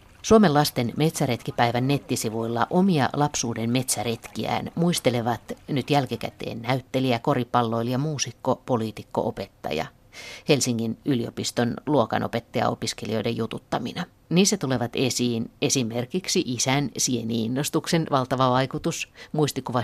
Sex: female